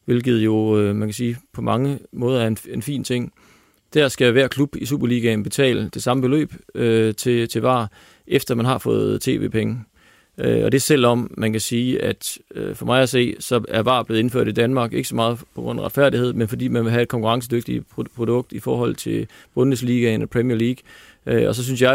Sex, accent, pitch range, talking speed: male, native, 115-135 Hz, 200 wpm